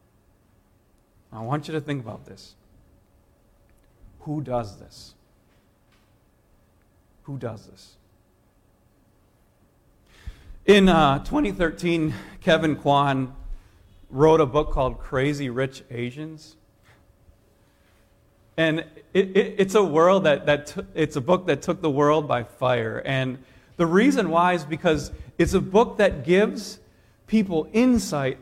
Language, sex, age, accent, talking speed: English, male, 40-59, American, 120 wpm